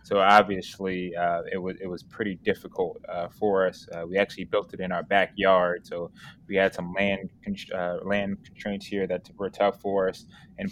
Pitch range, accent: 95-100 Hz, American